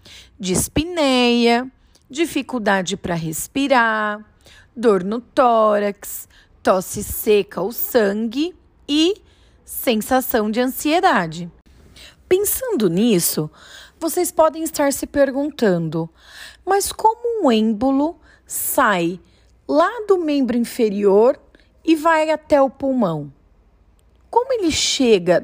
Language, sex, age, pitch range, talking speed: Portuguese, female, 30-49, 195-295 Hz, 95 wpm